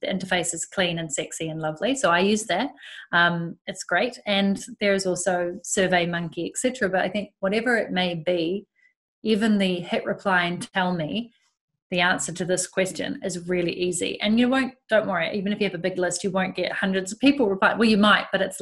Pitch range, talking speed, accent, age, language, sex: 180-205 Hz, 220 wpm, Australian, 30-49, English, female